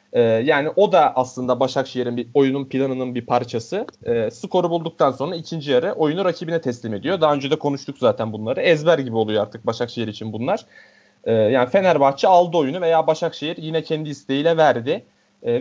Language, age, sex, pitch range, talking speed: Turkish, 30-49, male, 130-170 Hz, 175 wpm